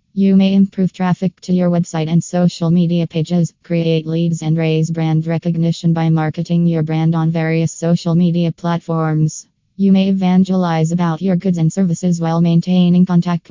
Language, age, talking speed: English, 20-39, 165 wpm